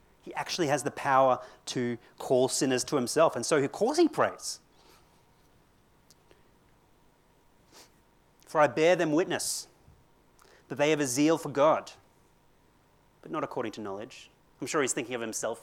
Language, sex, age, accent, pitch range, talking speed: English, male, 30-49, Australian, 120-155 Hz, 150 wpm